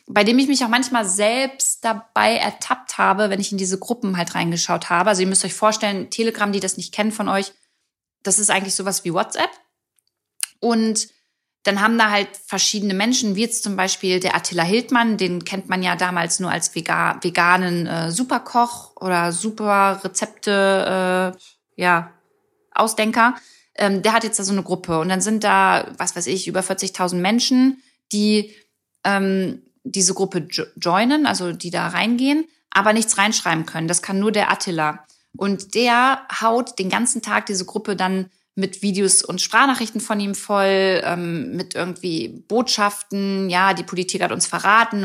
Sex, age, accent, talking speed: female, 20-39, German, 165 wpm